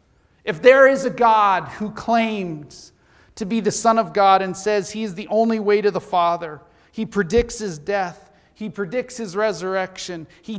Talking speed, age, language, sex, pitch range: 180 wpm, 40-59, English, male, 165-215 Hz